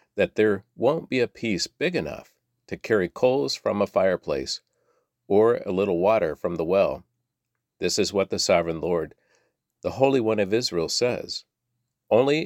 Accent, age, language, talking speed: American, 50-69, English, 165 wpm